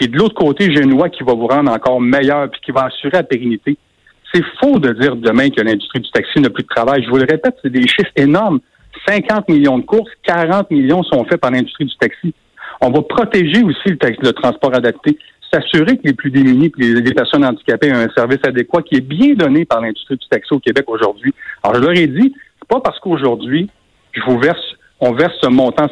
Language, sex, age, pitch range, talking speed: French, male, 60-79, 125-180 Hz, 235 wpm